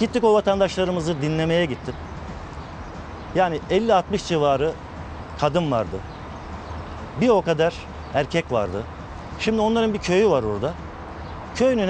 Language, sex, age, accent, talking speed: Turkish, male, 50-69, native, 110 wpm